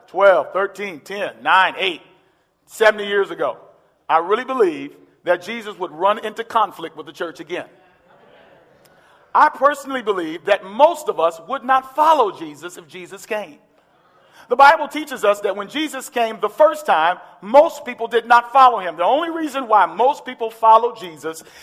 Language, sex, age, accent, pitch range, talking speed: English, male, 40-59, American, 225-325 Hz, 165 wpm